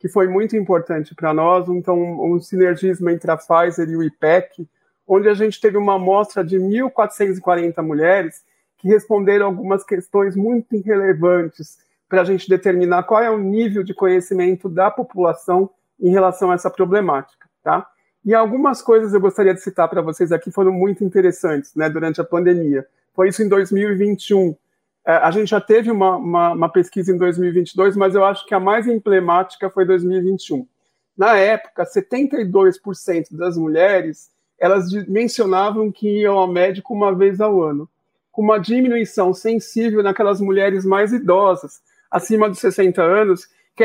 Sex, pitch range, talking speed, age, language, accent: male, 180-210 Hz, 155 wpm, 50-69, Portuguese, Brazilian